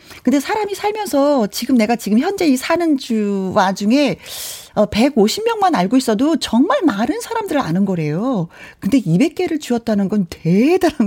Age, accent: 40-59, native